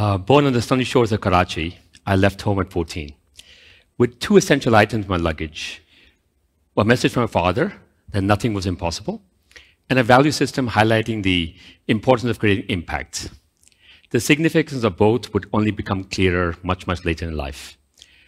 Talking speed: 170 wpm